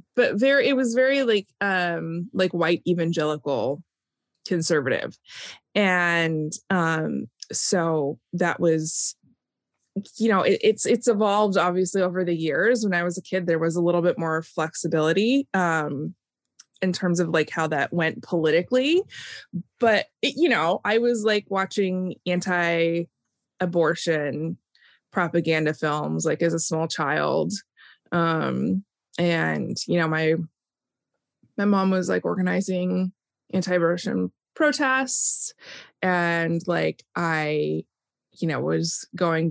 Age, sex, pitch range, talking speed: 20-39, female, 165-205 Hz, 125 wpm